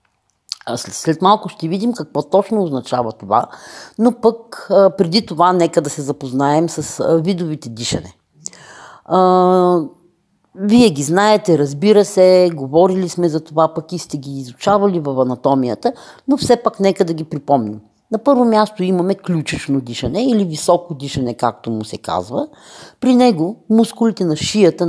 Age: 40-59